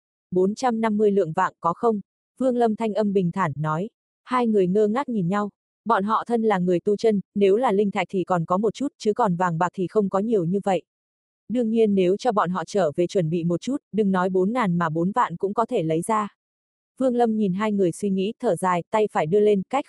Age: 20-39